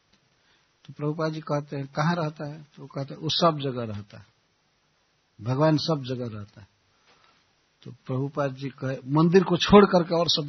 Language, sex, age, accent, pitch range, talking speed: Hindi, male, 60-79, native, 135-190 Hz, 170 wpm